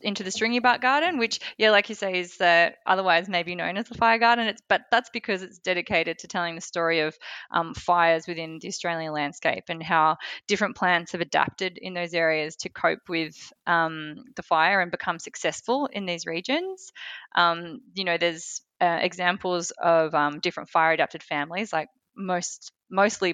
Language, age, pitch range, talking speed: English, 20-39, 165-210 Hz, 185 wpm